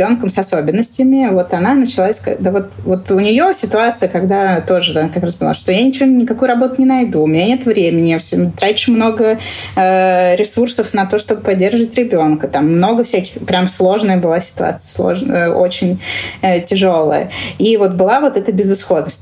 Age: 20-39